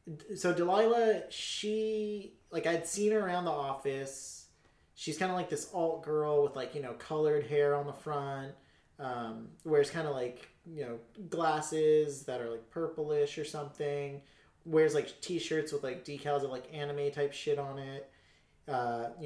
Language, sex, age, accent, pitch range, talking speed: English, male, 30-49, American, 135-165 Hz, 170 wpm